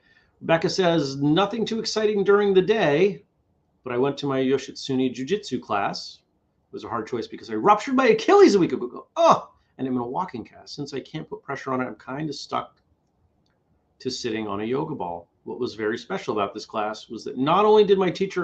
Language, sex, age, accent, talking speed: English, male, 30-49, American, 220 wpm